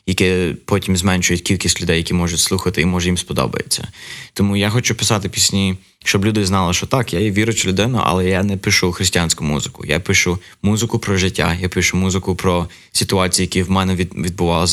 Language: Ukrainian